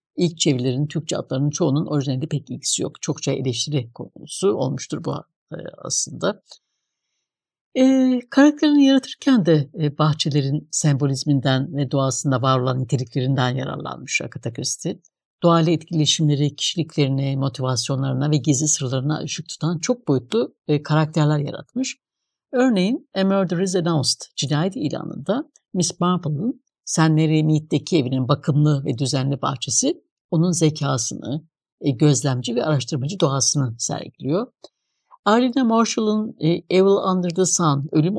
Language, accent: Turkish, native